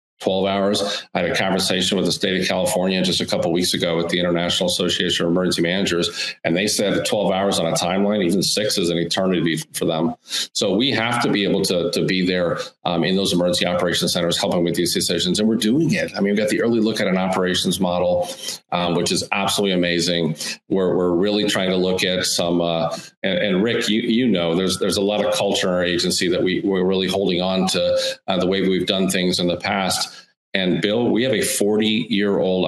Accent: American